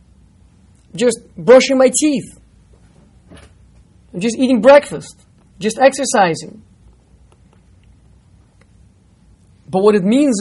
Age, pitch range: 30-49, 180-255 Hz